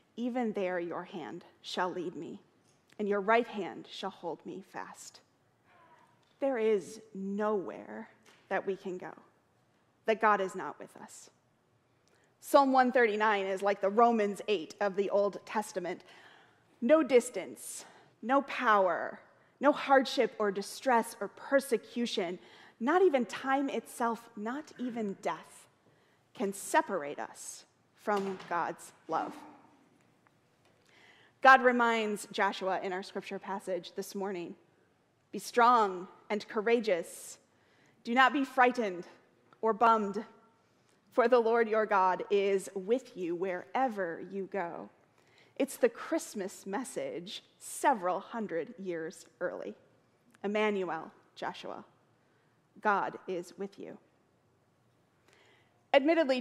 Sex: female